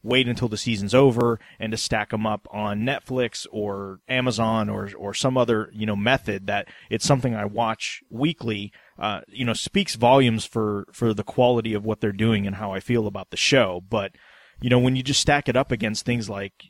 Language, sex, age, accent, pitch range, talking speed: English, male, 30-49, American, 105-125 Hz, 210 wpm